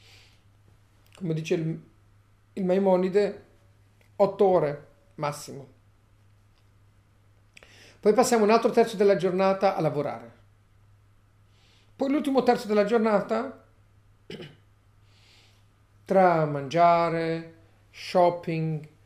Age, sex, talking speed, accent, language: 50-69, male, 75 wpm, native, Italian